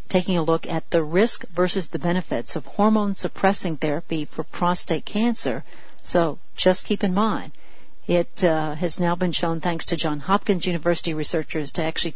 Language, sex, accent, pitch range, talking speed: English, female, American, 165-205 Hz, 170 wpm